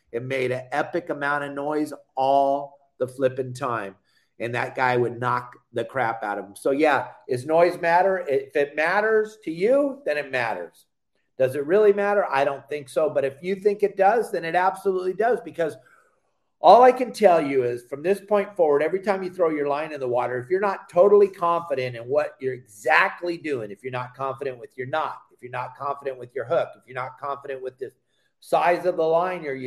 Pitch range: 135-190 Hz